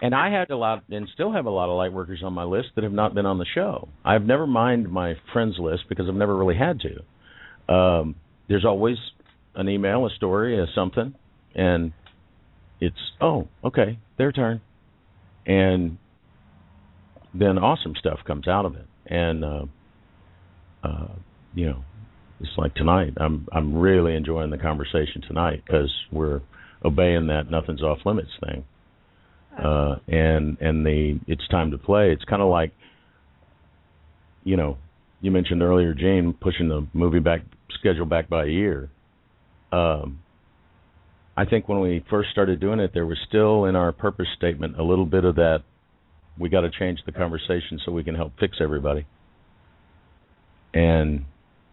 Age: 50-69